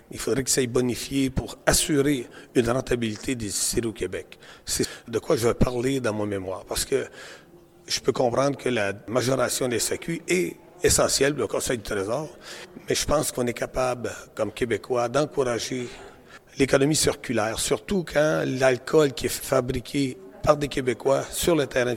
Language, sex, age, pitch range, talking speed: French, male, 40-59, 115-145 Hz, 170 wpm